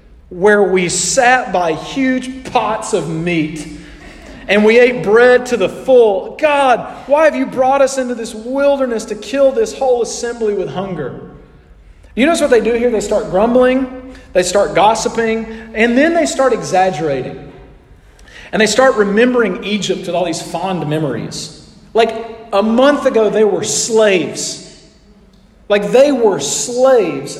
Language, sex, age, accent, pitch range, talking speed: English, male, 40-59, American, 190-260 Hz, 150 wpm